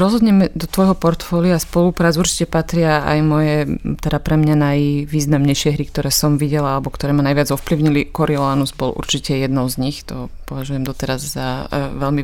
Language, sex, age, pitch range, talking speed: Slovak, female, 30-49, 135-160 Hz, 160 wpm